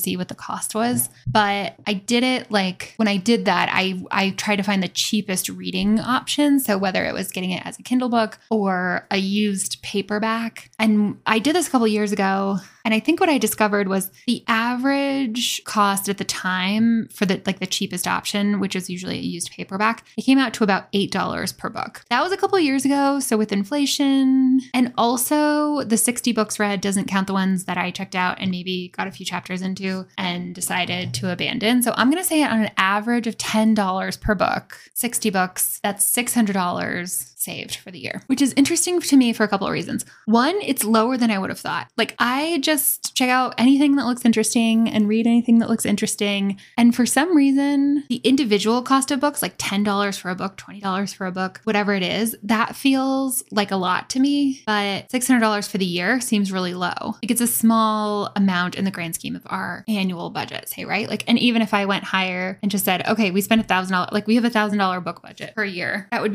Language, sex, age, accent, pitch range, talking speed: English, female, 10-29, American, 195-240 Hz, 225 wpm